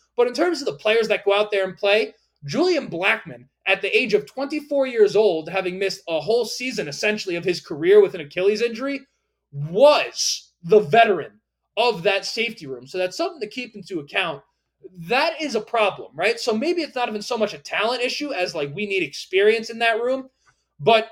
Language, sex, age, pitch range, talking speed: English, male, 20-39, 180-240 Hz, 205 wpm